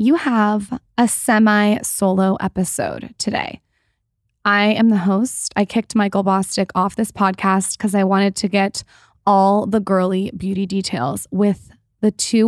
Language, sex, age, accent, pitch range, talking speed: English, female, 20-39, American, 195-230 Hz, 145 wpm